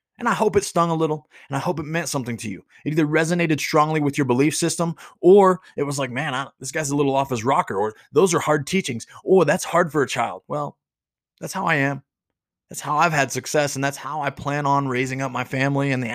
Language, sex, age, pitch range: English, male, 30-49, 125-160 Hz